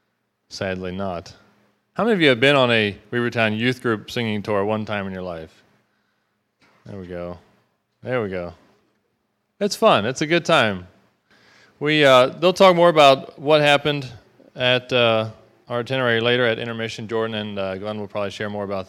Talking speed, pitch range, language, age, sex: 180 wpm, 105-125 Hz, English, 20-39, male